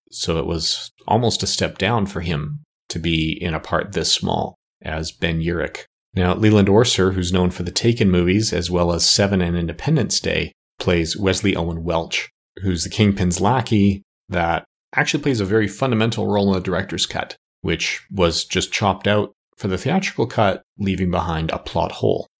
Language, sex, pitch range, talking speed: English, male, 85-100 Hz, 180 wpm